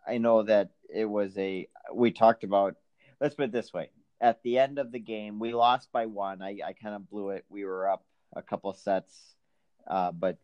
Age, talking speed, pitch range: 40-59, 215 wpm, 95-120 Hz